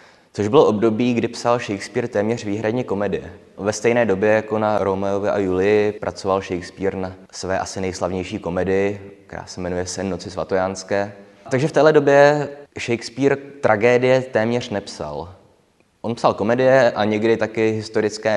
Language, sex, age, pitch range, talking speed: Czech, male, 20-39, 95-115 Hz, 145 wpm